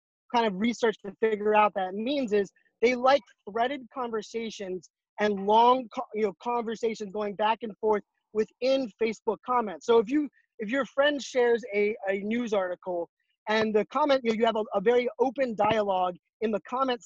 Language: English